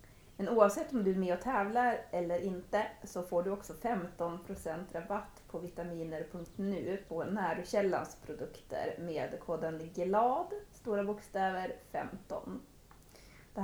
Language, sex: Swedish, female